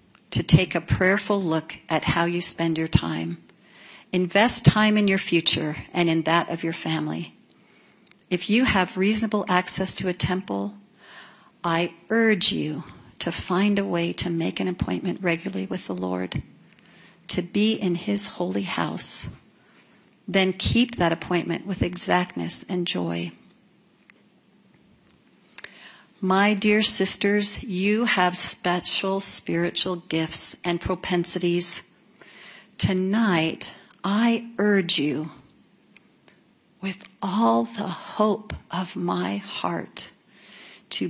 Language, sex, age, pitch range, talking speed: English, female, 50-69, 170-205 Hz, 120 wpm